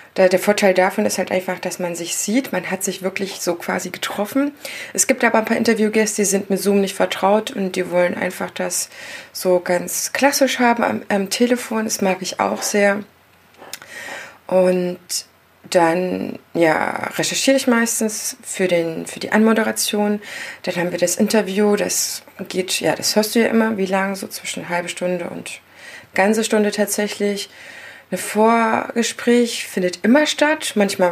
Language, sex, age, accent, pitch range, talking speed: German, female, 20-39, German, 185-230 Hz, 160 wpm